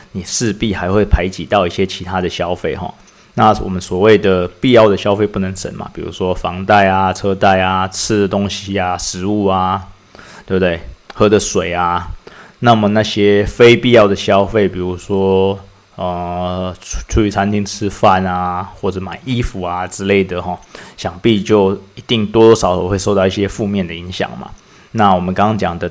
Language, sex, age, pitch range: Chinese, male, 20-39, 90-100 Hz